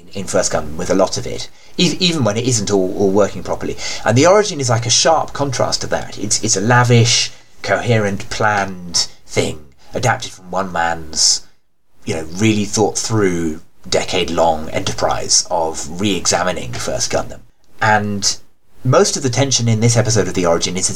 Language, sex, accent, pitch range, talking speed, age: English, male, British, 85-120 Hz, 180 wpm, 30-49